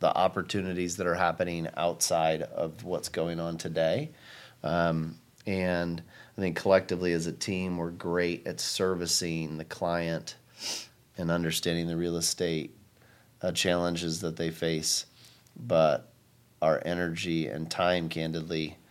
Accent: American